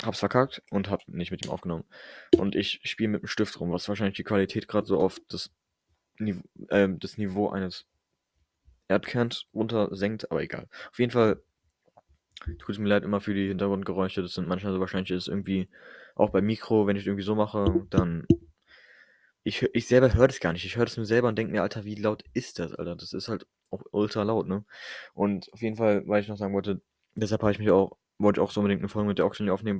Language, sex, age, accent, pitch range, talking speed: German, male, 20-39, German, 95-105 Hz, 225 wpm